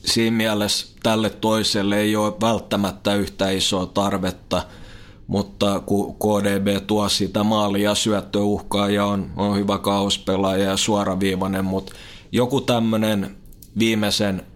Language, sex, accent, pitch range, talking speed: Finnish, male, native, 100-105 Hz, 115 wpm